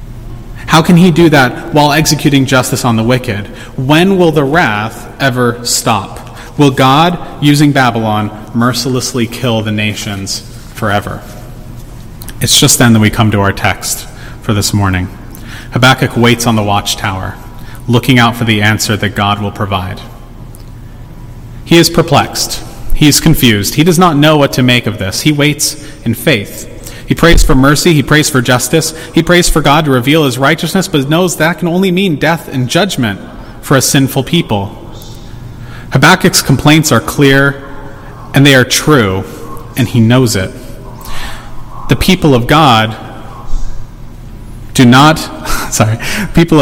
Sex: male